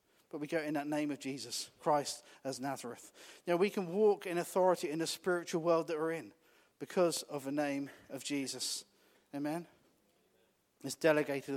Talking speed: 170 wpm